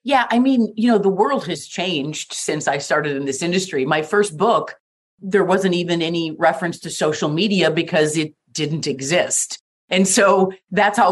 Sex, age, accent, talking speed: female, 30-49, American, 185 wpm